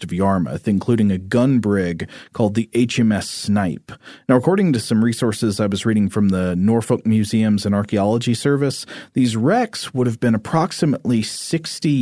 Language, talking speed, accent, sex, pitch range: English, 160 wpm, American, male, 100-125 Hz